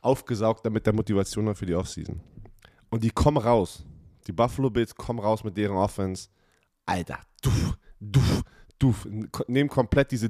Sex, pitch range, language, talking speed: male, 110-145 Hz, German, 150 wpm